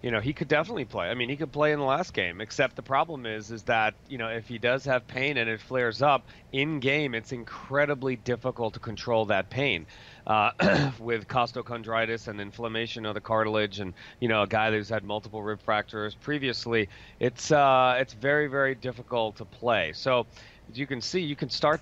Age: 30-49